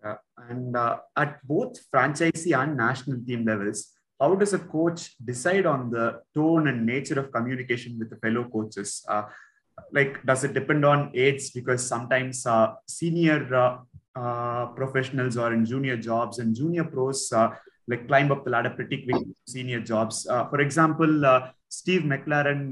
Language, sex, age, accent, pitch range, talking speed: Tamil, male, 30-49, native, 120-145 Hz, 165 wpm